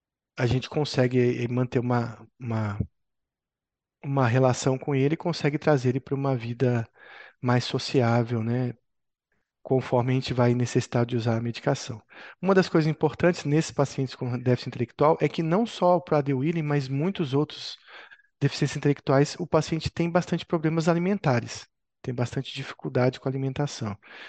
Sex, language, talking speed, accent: male, Portuguese, 150 wpm, Brazilian